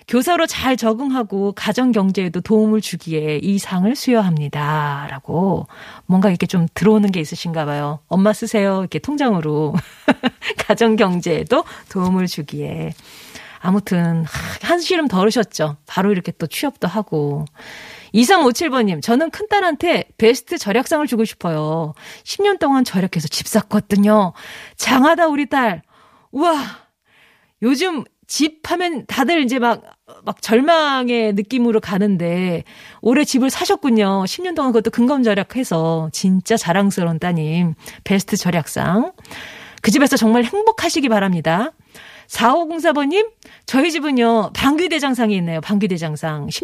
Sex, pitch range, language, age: female, 180-265 Hz, Korean, 40-59